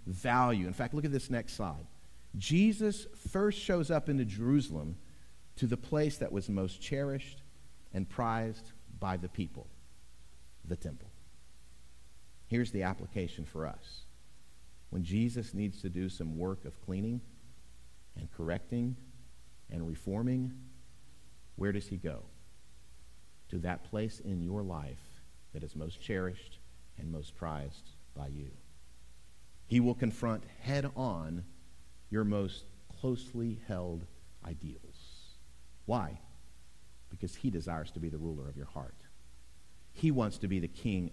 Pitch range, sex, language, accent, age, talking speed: 75-115 Hz, male, English, American, 50-69, 135 wpm